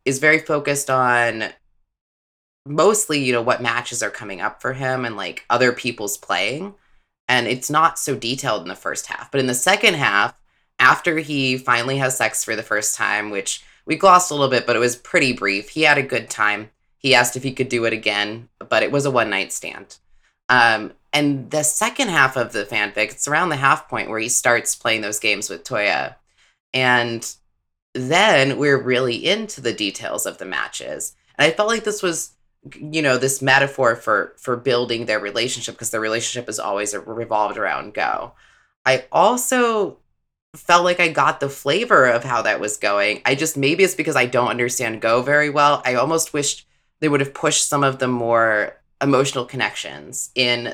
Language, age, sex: English, 20-39, female